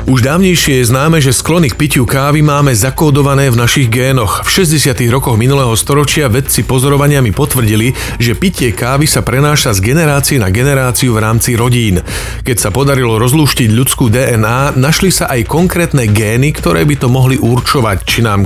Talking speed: 170 wpm